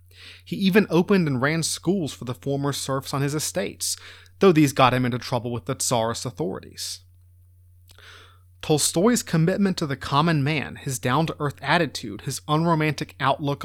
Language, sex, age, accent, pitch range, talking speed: English, male, 30-49, American, 115-160 Hz, 155 wpm